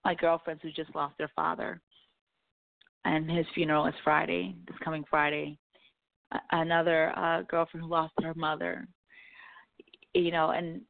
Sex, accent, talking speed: female, American, 140 wpm